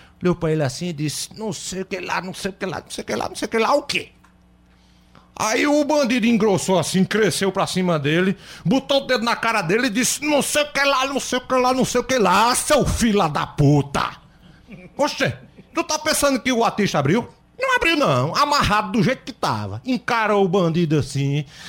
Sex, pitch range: male, 145-230 Hz